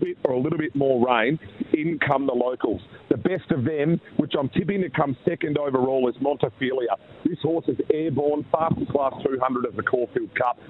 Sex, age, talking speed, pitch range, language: male, 40-59, 195 wpm, 120-145 Hz, English